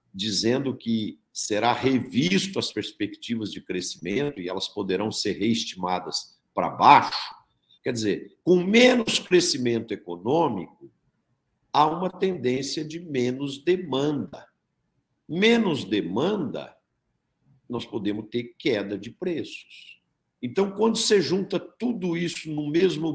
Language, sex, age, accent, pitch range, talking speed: Portuguese, male, 60-79, Brazilian, 115-175 Hz, 110 wpm